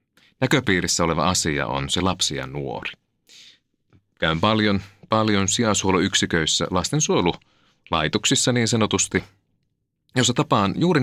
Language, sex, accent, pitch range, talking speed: Finnish, male, native, 85-120 Hz, 100 wpm